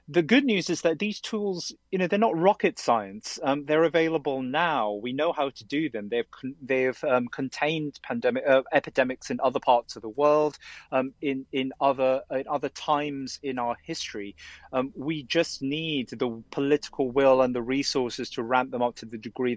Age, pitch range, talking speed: 30-49, 125-165 Hz, 195 wpm